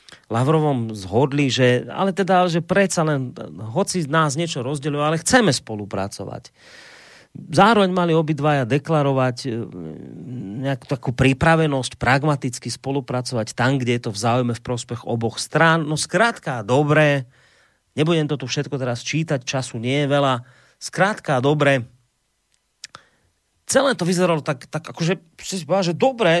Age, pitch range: 30-49, 120-165 Hz